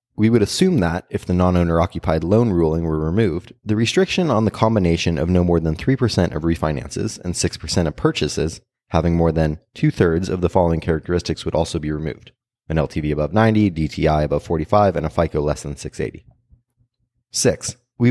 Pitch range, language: 85-115 Hz, English